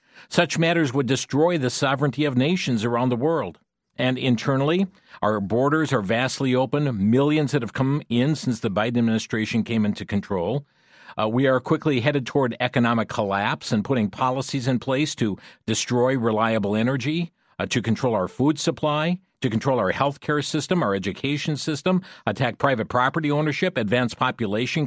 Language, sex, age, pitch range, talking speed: English, male, 50-69, 120-160 Hz, 165 wpm